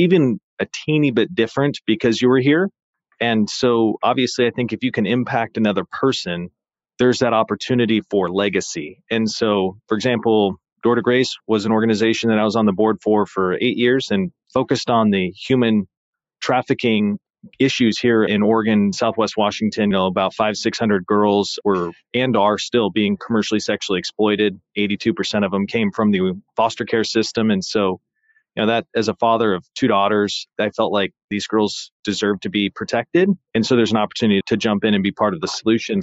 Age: 30-49